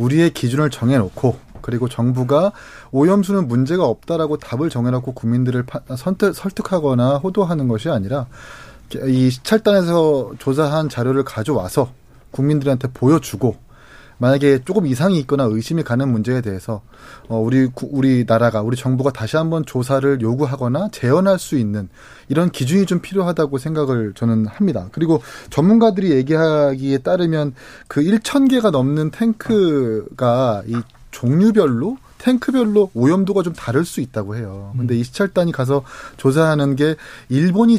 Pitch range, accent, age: 125-170 Hz, native, 30-49